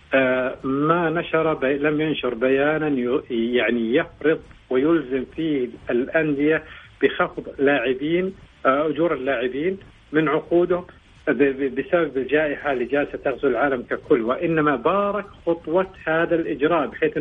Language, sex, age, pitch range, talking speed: Arabic, male, 50-69, 135-170 Hz, 120 wpm